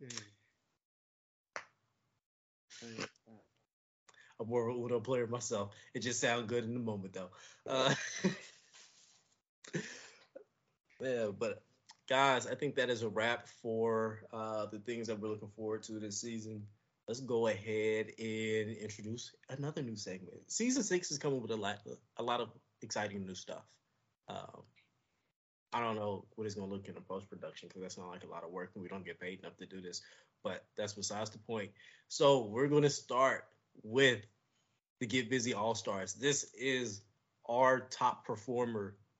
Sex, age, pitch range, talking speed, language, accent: male, 20-39, 105-125 Hz, 160 wpm, English, American